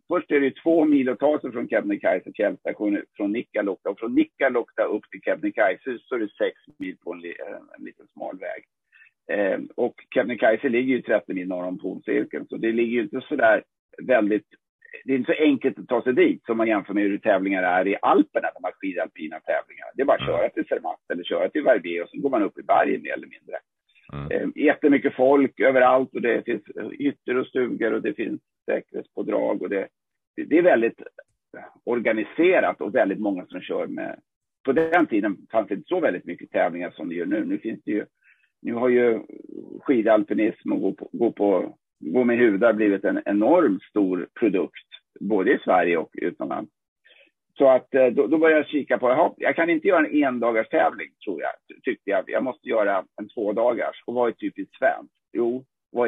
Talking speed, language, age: 205 wpm, Swedish, 50-69